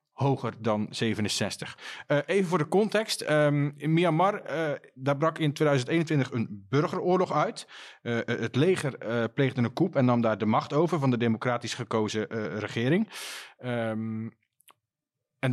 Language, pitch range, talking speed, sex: Dutch, 120-160 Hz, 155 wpm, male